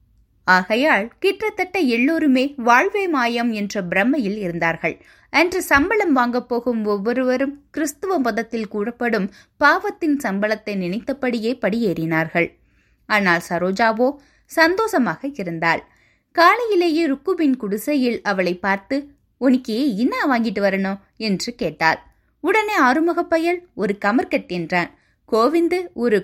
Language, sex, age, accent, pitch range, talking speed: Tamil, female, 20-39, native, 195-290 Hz, 95 wpm